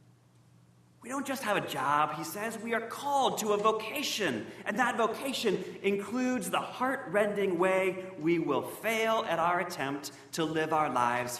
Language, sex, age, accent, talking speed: English, male, 40-59, American, 165 wpm